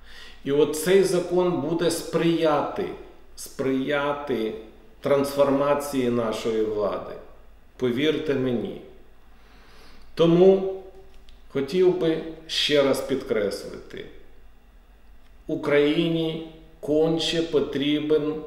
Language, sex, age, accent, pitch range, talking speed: Ukrainian, male, 50-69, native, 140-165 Hz, 65 wpm